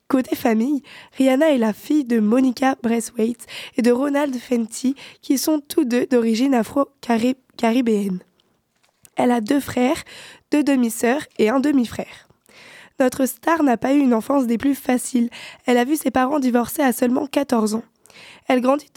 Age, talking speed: 20-39, 160 wpm